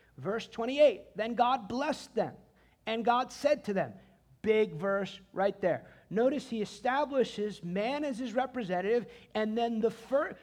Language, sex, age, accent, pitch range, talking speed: English, male, 50-69, American, 215-265 Hz, 150 wpm